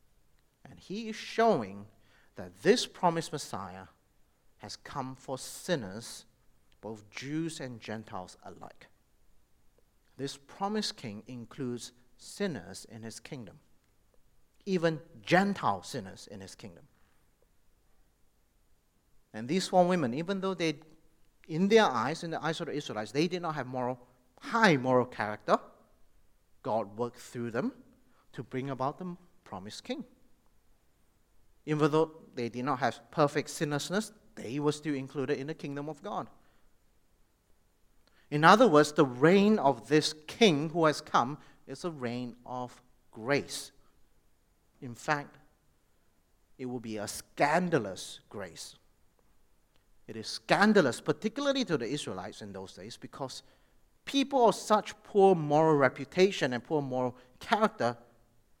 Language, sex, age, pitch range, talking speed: English, male, 50-69, 115-165 Hz, 130 wpm